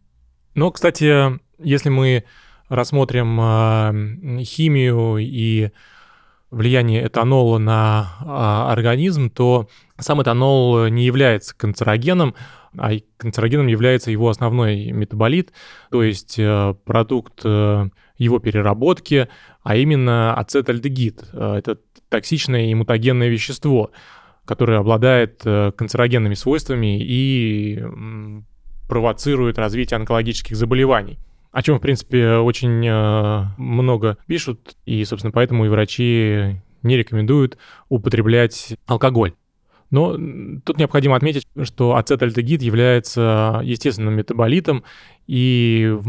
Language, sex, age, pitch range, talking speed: Russian, male, 20-39, 110-130 Hz, 95 wpm